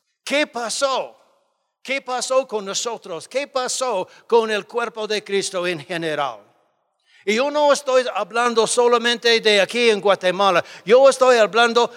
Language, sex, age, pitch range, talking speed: Spanish, male, 60-79, 190-245 Hz, 140 wpm